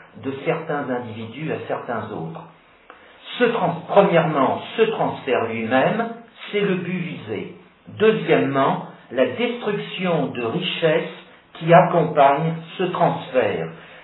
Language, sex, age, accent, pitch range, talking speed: French, male, 50-69, French, 150-190 Hz, 105 wpm